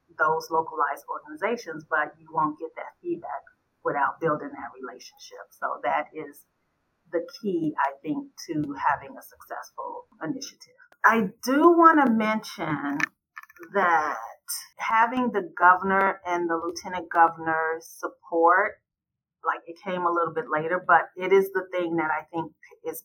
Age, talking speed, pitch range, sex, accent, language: 40-59, 145 wpm, 165-215 Hz, female, American, English